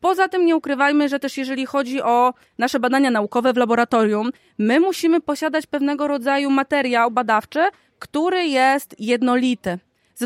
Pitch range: 250-295 Hz